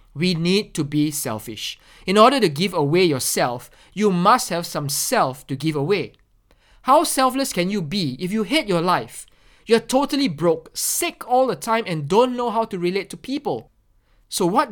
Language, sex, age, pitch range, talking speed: English, male, 20-39, 140-210 Hz, 190 wpm